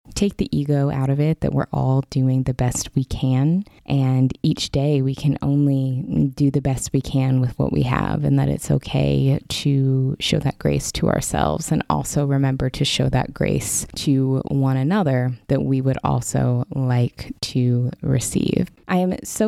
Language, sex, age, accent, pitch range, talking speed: English, female, 20-39, American, 130-150 Hz, 180 wpm